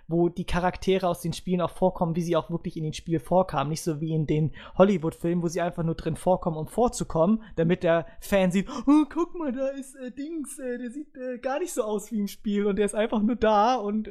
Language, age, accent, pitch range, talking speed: English, 20-39, German, 150-200 Hz, 250 wpm